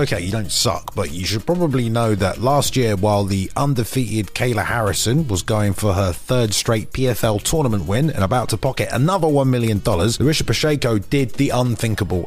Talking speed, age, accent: 185 wpm, 30-49, British